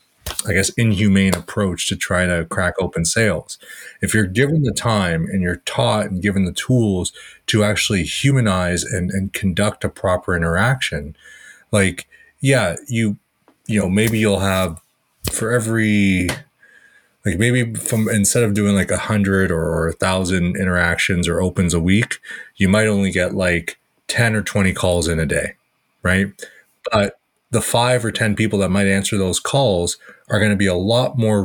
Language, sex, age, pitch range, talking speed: English, male, 30-49, 90-105 Hz, 170 wpm